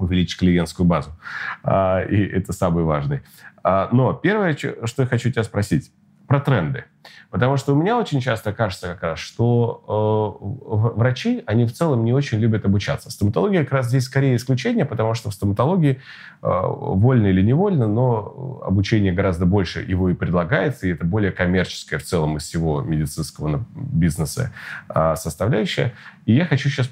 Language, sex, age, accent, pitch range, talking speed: Russian, male, 30-49, native, 90-125 Hz, 160 wpm